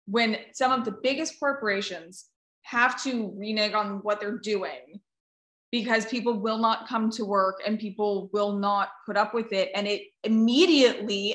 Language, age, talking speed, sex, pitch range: English, 20-39, 165 wpm, female, 205-250 Hz